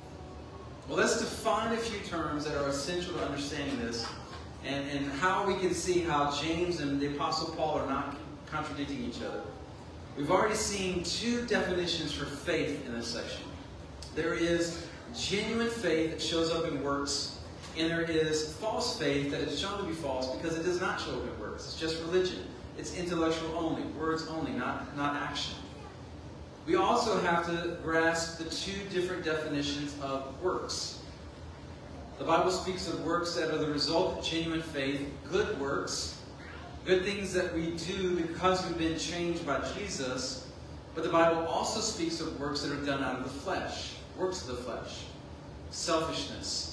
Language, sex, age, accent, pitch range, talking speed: English, male, 40-59, American, 140-175 Hz, 170 wpm